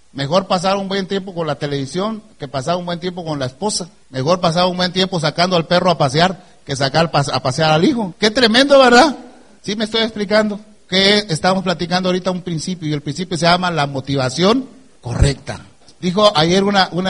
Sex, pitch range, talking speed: male, 150-200 Hz, 205 wpm